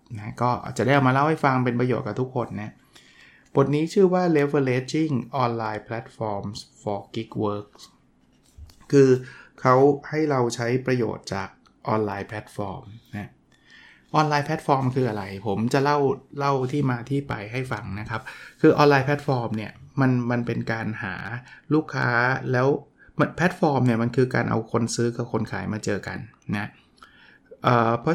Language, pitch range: Thai, 115-145 Hz